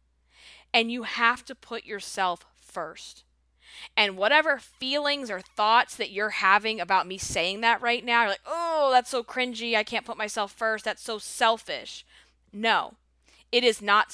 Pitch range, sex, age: 170-235 Hz, female, 20-39